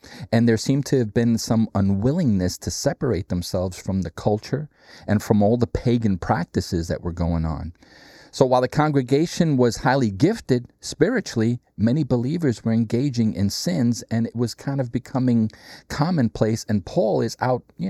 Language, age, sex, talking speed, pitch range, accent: English, 40-59, male, 170 wpm, 100-130 Hz, American